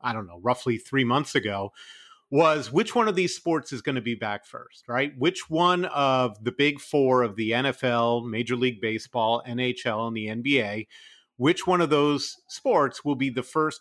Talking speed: 195 wpm